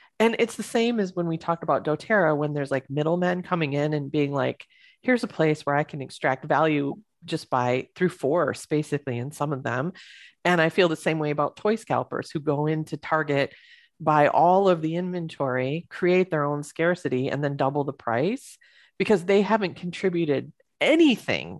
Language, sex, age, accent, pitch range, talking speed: English, female, 30-49, American, 145-185 Hz, 190 wpm